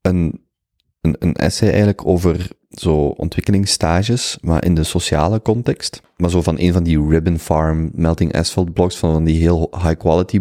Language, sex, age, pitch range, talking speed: Dutch, male, 30-49, 80-100 Hz, 175 wpm